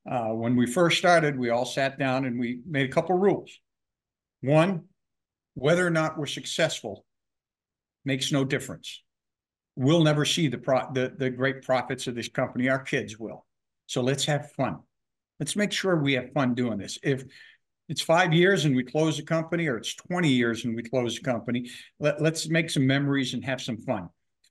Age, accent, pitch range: 50-69, American, 125-150 Hz